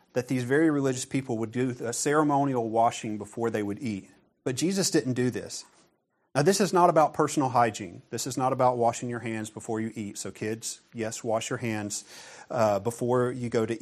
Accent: American